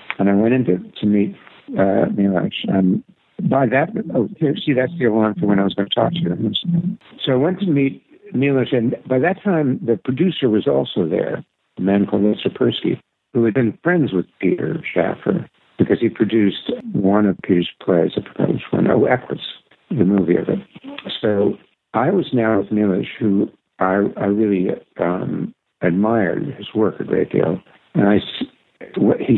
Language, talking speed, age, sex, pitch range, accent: English, 185 wpm, 60-79, male, 95-130 Hz, American